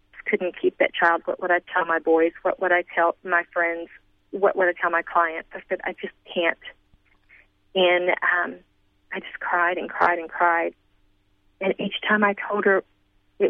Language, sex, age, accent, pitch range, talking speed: English, female, 40-59, American, 160-200 Hz, 190 wpm